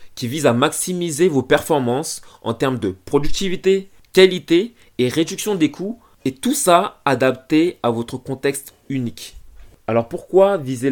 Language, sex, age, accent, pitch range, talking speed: French, male, 20-39, French, 115-155 Hz, 145 wpm